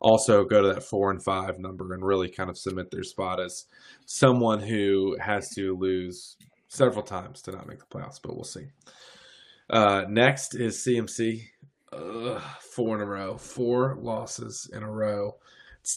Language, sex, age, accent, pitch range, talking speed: English, male, 20-39, American, 100-125 Hz, 175 wpm